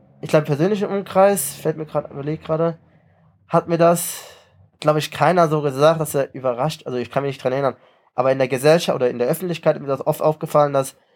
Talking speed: 225 wpm